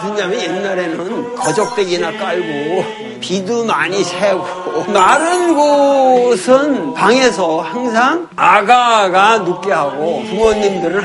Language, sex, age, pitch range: Korean, male, 50-69, 215-335 Hz